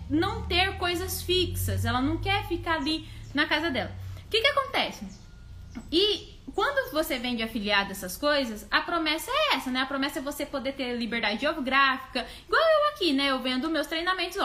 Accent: Brazilian